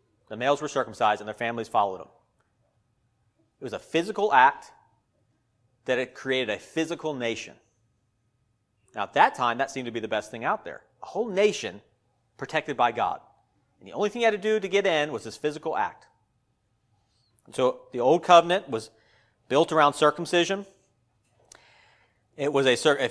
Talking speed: 170 wpm